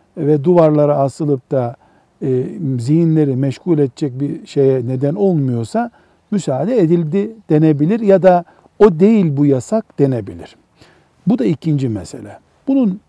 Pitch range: 125-170 Hz